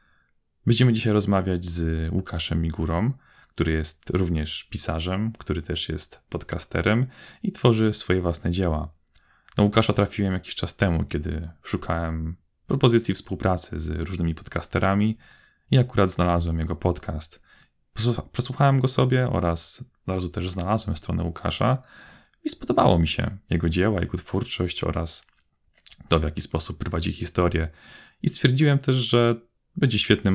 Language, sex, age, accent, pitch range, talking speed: Polish, male, 20-39, native, 80-105 Hz, 135 wpm